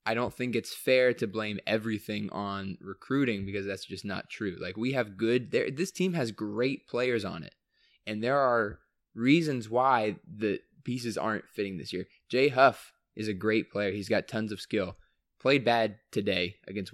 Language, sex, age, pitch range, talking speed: English, male, 20-39, 100-115 Hz, 190 wpm